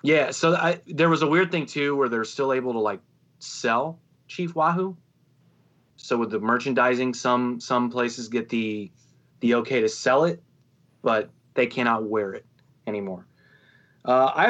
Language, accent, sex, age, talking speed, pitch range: English, American, male, 30-49, 160 wpm, 110-135 Hz